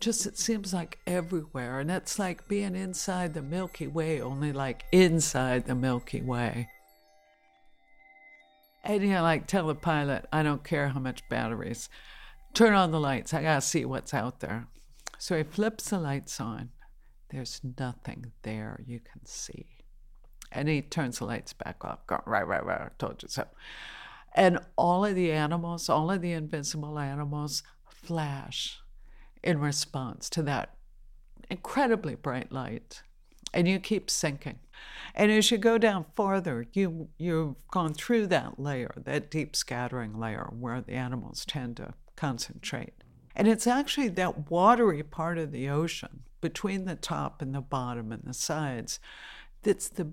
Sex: female